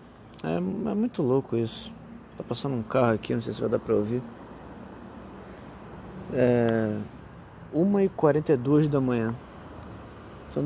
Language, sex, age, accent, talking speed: Portuguese, male, 20-39, Brazilian, 120 wpm